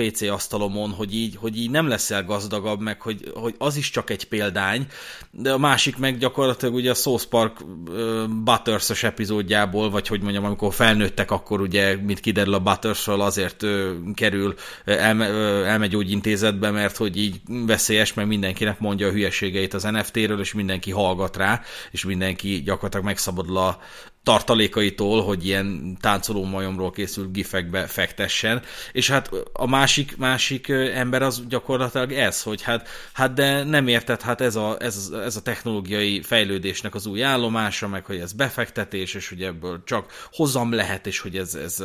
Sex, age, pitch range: male, 30-49, 95-120 Hz